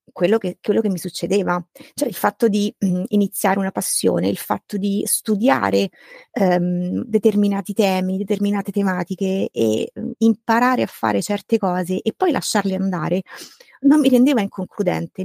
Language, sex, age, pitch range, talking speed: Italian, female, 30-49, 185-235 Hz, 135 wpm